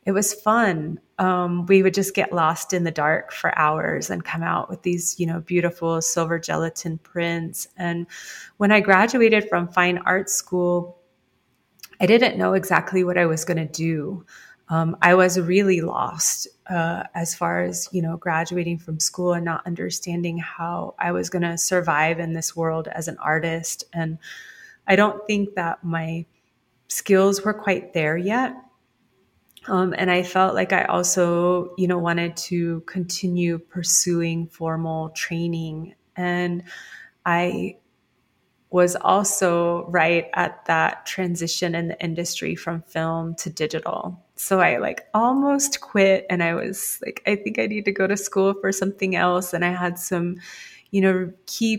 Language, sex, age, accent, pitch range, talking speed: English, female, 30-49, American, 165-190 Hz, 160 wpm